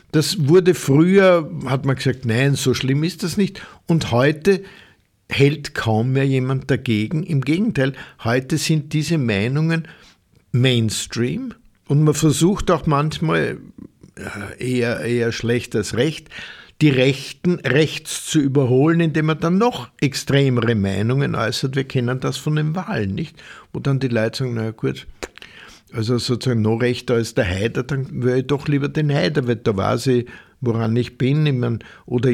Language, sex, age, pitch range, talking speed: German, male, 50-69, 120-155 Hz, 160 wpm